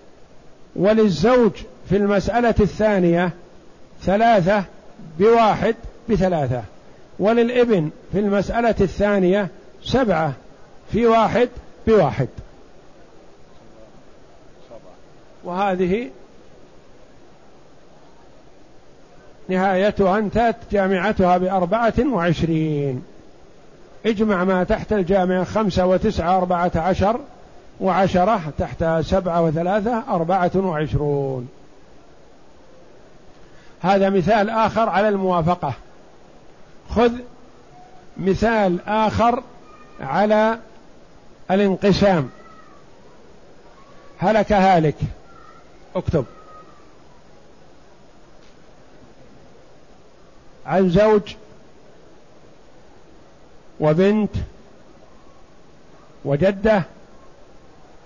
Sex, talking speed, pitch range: male, 55 wpm, 175-215 Hz